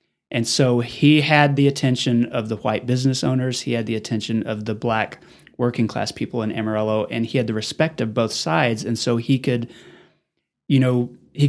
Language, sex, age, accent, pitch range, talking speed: English, male, 30-49, American, 120-160 Hz, 200 wpm